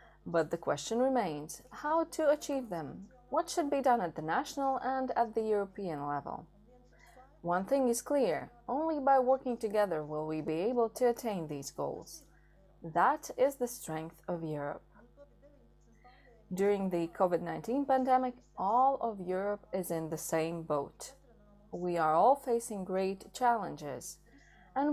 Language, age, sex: English, 20-39, female